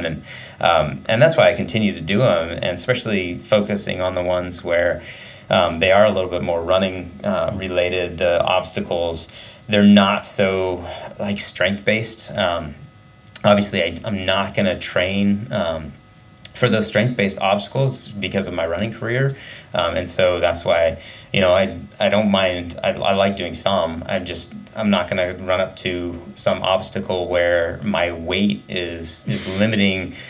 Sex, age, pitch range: male, 30-49, 90-105 Hz